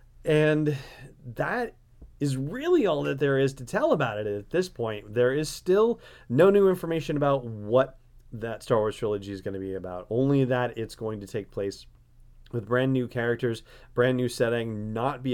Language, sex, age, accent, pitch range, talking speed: English, male, 30-49, American, 110-135 Hz, 190 wpm